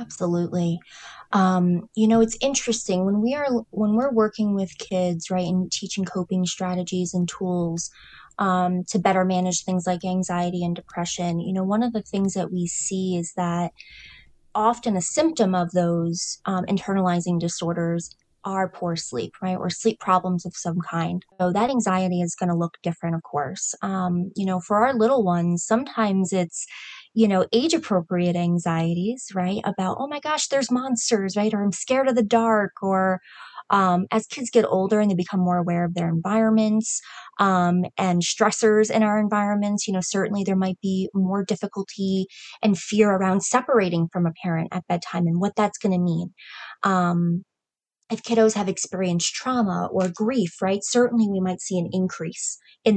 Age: 20-39